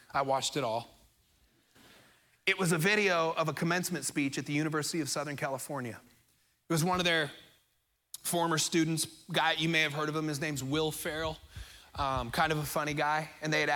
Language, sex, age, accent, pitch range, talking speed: English, male, 30-49, American, 135-160 Hz, 195 wpm